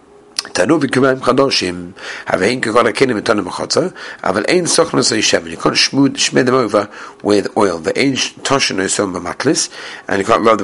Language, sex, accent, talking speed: English, male, British, 120 wpm